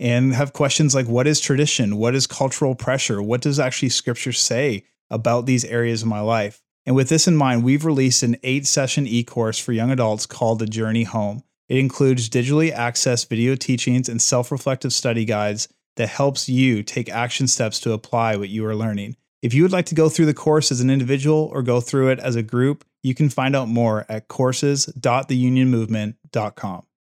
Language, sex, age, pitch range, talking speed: English, male, 30-49, 110-135 Hz, 190 wpm